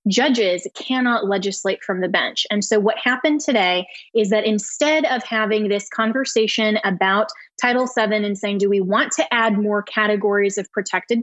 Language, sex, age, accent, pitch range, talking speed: English, female, 20-39, American, 200-235 Hz, 170 wpm